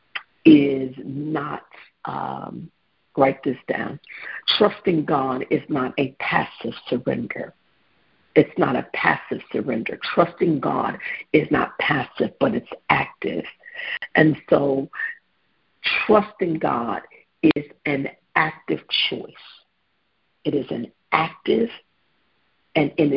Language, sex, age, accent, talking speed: English, female, 50-69, American, 105 wpm